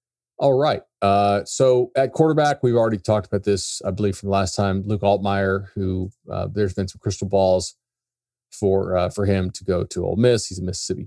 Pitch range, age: 95-115 Hz, 30-49